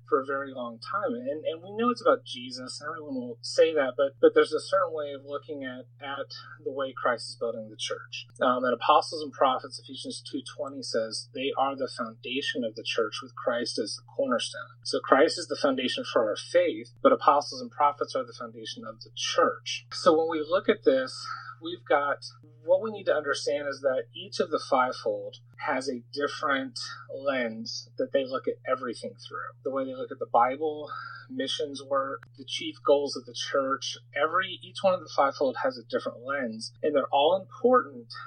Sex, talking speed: male, 205 wpm